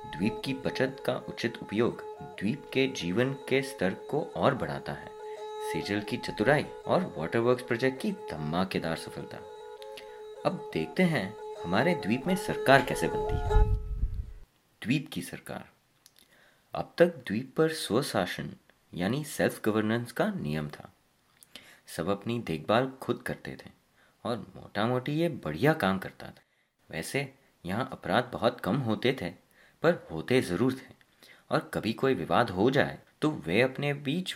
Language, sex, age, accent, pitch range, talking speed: Hindi, male, 30-49, native, 100-140 Hz, 120 wpm